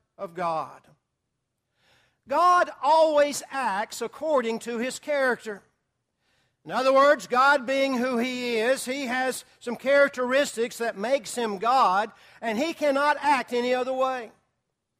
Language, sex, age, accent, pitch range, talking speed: English, male, 60-79, American, 235-275 Hz, 130 wpm